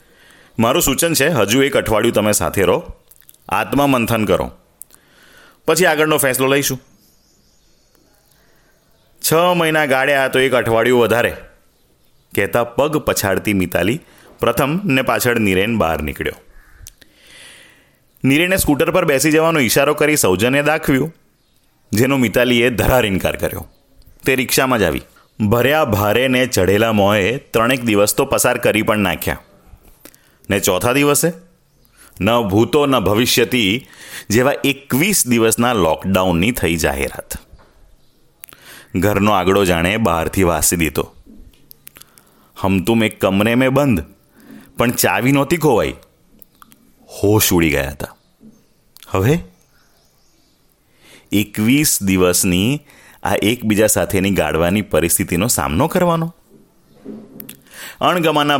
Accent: native